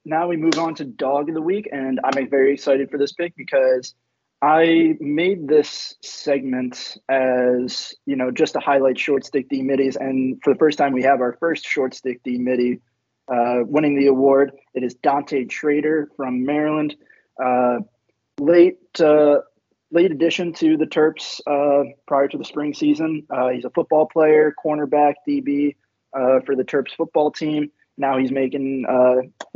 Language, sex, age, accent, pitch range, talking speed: English, male, 20-39, American, 130-155 Hz, 175 wpm